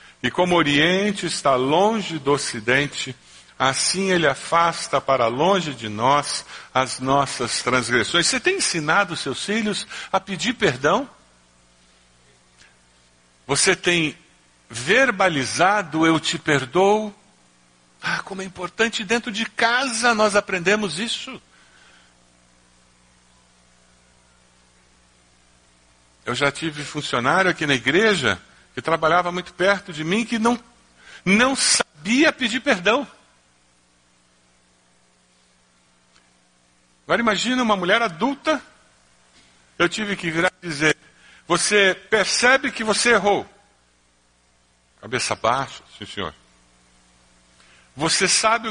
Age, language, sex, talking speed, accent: 60-79, Portuguese, male, 100 wpm, Brazilian